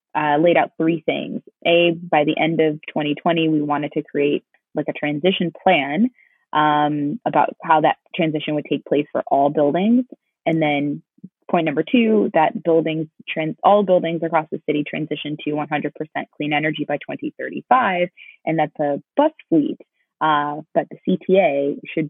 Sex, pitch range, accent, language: female, 150-175 Hz, American, English